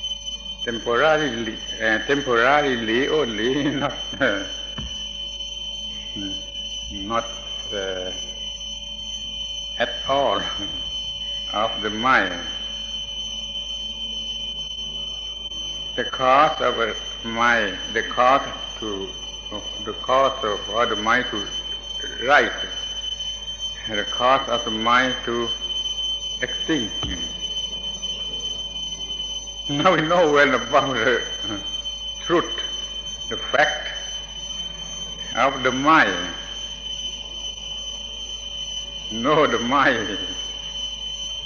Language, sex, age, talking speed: English, male, 60-79, 75 wpm